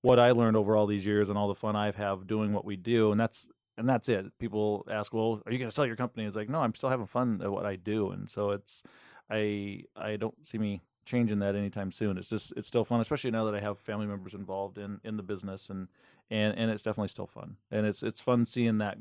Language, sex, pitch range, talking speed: English, male, 105-115 Hz, 270 wpm